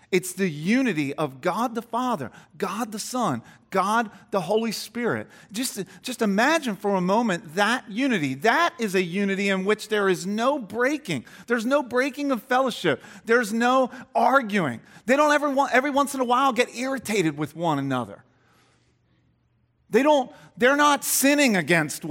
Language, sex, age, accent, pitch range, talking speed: English, male, 40-59, American, 170-250 Hz, 160 wpm